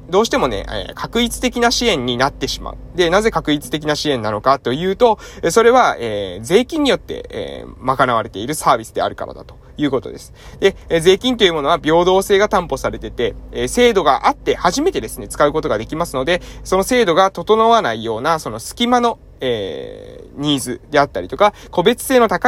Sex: male